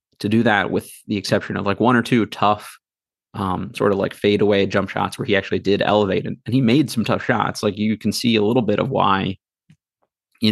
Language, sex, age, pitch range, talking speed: English, male, 30-49, 100-120 Hz, 240 wpm